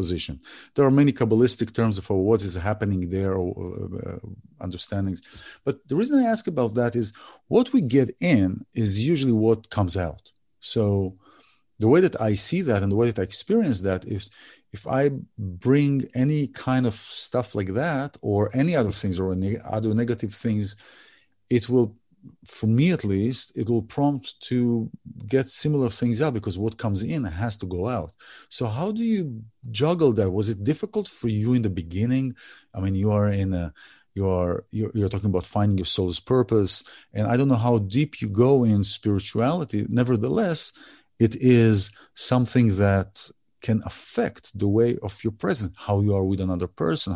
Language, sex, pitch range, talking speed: English, male, 100-125 Hz, 180 wpm